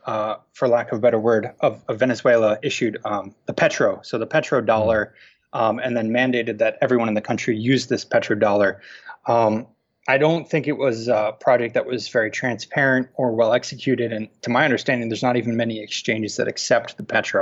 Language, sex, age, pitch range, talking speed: English, male, 20-39, 115-140 Hz, 205 wpm